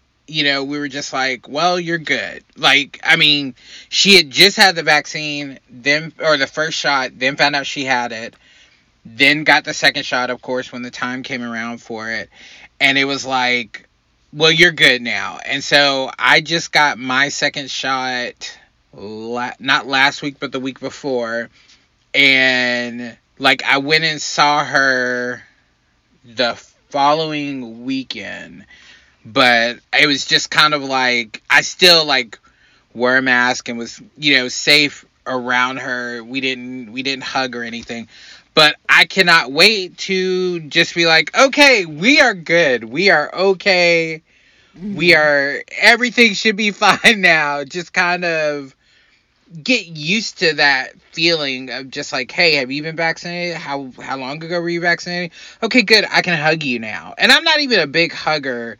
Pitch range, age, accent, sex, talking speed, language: 125-165 Hz, 30-49, American, male, 165 wpm, English